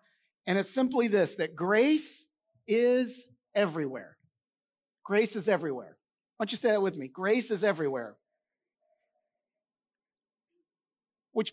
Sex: male